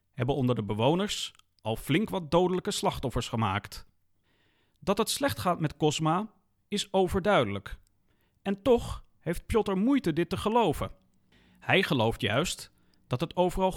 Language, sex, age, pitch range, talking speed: Dutch, male, 40-59, 115-190 Hz, 140 wpm